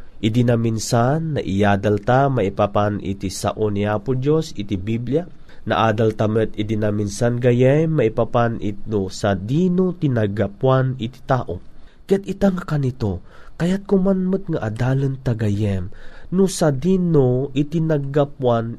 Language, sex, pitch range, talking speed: Filipino, male, 115-155 Hz, 120 wpm